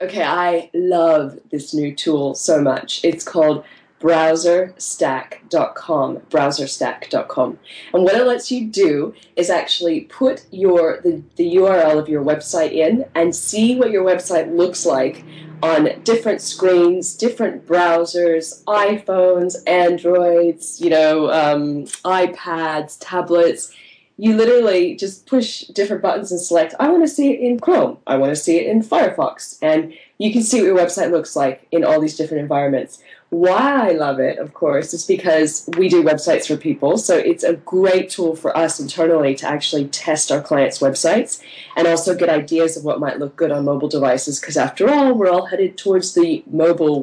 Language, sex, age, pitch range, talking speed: English, female, 20-39, 155-190 Hz, 170 wpm